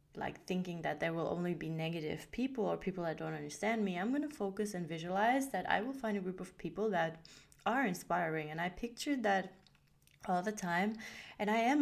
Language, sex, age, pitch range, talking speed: English, female, 20-39, 170-200 Hz, 215 wpm